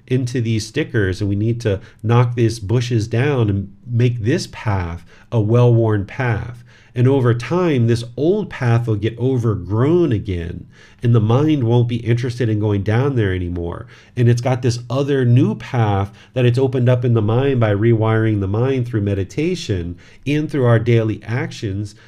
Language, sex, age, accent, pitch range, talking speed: English, male, 40-59, American, 105-125 Hz, 175 wpm